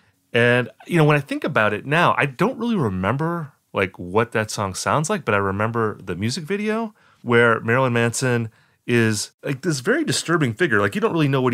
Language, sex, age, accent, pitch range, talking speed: English, male, 30-49, American, 110-155 Hz, 210 wpm